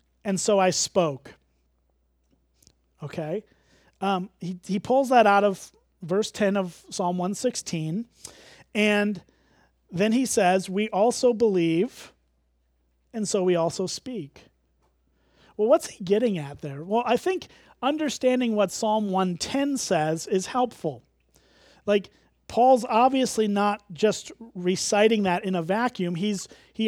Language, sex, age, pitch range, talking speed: English, male, 40-59, 180-230 Hz, 125 wpm